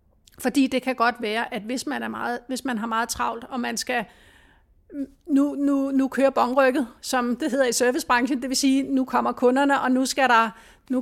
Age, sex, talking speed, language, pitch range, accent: 30-49, female, 210 wpm, Danish, 225-265 Hz, native